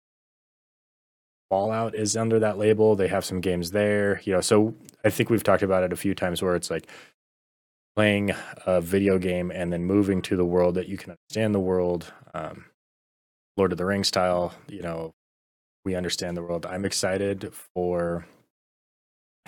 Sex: male